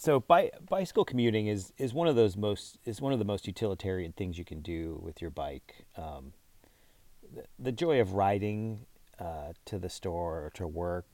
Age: 30-49